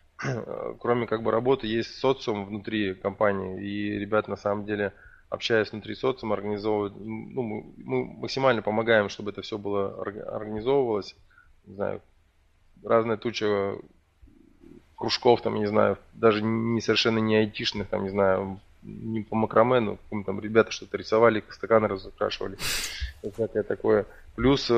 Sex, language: male, Russian